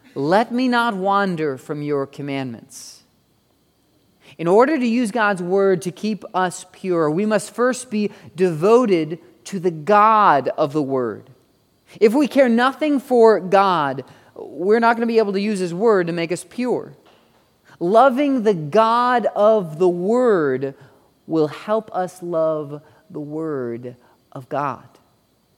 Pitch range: 165-230 Hz